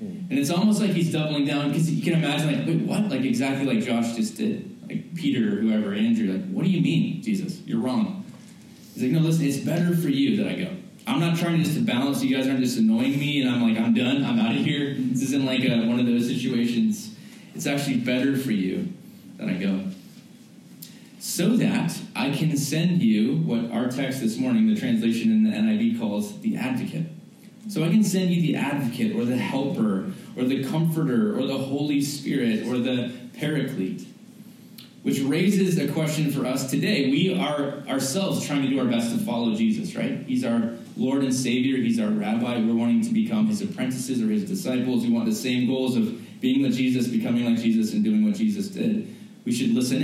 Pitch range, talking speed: 145-225 Hz, 210 wpm